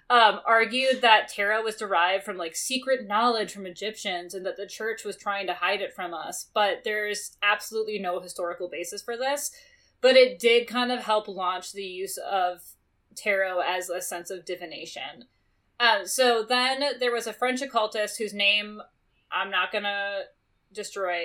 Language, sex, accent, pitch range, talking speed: English, female, American, 195-235 Hz, 170 wpm